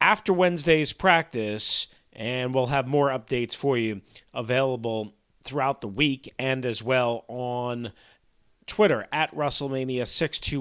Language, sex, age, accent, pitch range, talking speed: English, male, 40-59, American, 115-145 Hz, 120 wpm